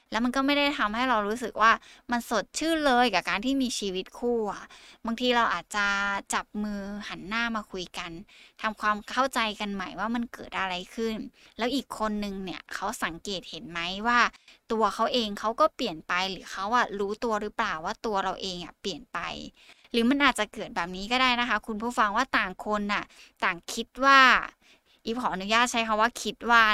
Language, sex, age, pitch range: Thai, female, 20-39, 195-240 Hz